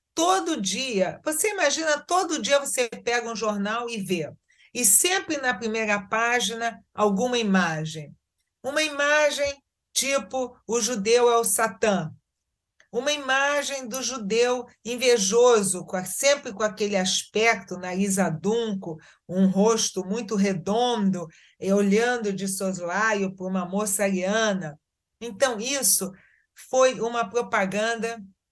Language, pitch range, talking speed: Portuguese, 190-255 Hz, 115 wpm